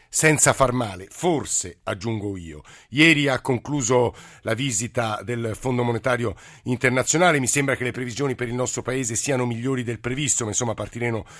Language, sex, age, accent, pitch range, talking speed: Italian, male, 50-69, native, 115-140 Hz, 165 wpm